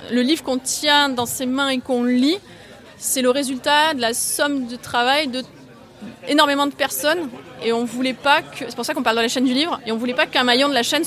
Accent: French